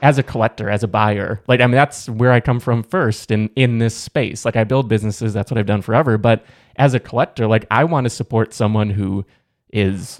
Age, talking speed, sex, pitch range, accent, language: 20-39, 235 wpm, male, 110-135 Hz, American, English